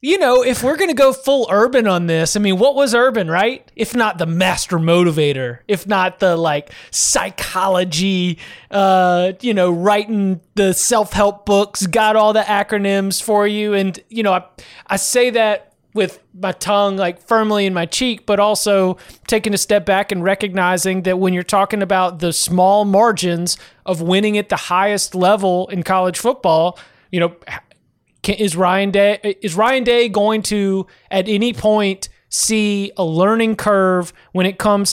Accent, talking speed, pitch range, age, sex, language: American, 170 wpm, 180-210 Hz, 30-49, male, English